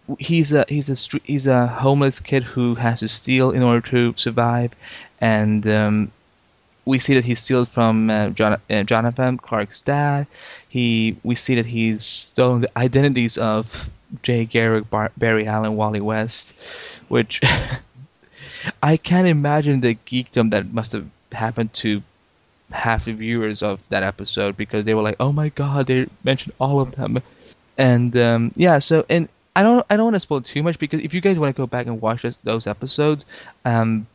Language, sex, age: English, male, 20-39